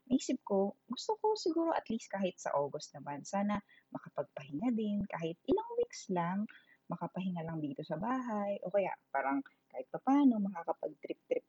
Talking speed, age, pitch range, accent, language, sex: 155 wpm, 20-39, 155-220 Hz, native, Filipino, female